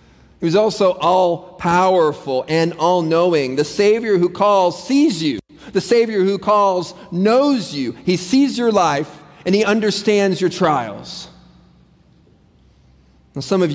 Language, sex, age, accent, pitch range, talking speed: English, male, 30-49, American, 150-190 Hz, 125 wpm